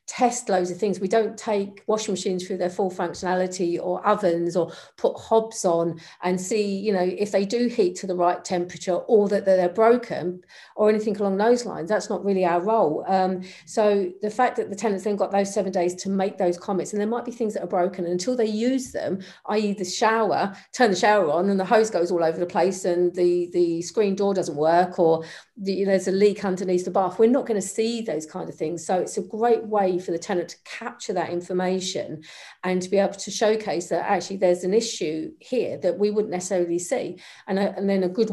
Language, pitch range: English, 180-215 Hz